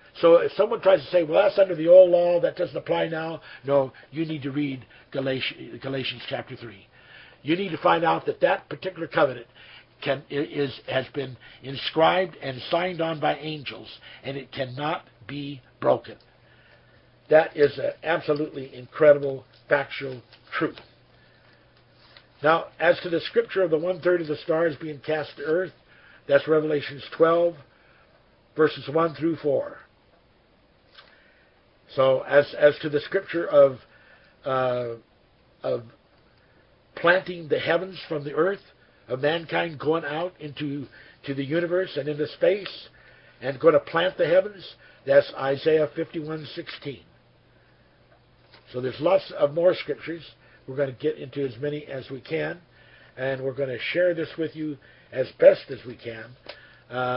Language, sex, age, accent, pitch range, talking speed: English, male, 60-79, American, 130-165 Hz, 150 wpm